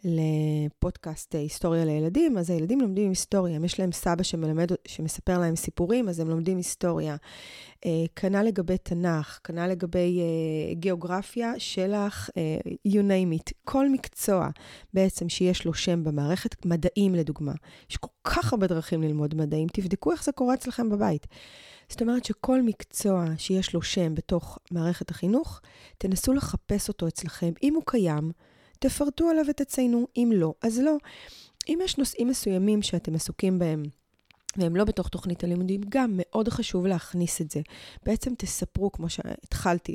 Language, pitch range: Hebrew, 170-215 Hz